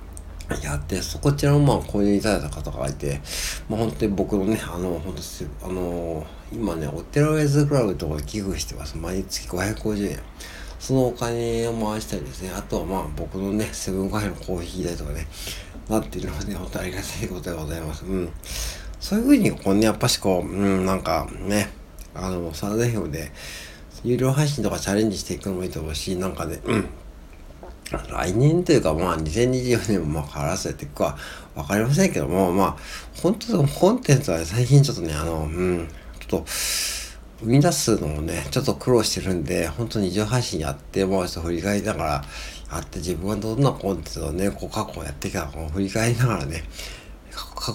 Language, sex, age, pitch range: Japanese, male, 60-79, 80-105 Hz